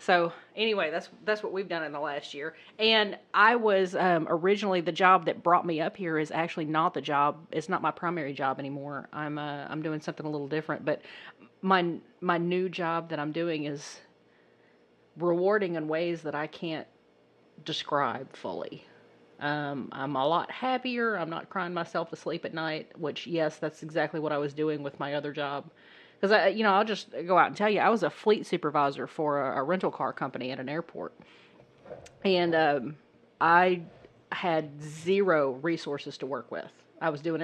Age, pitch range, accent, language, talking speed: 30-49, 145-180 Hz, American, English, 195 wpm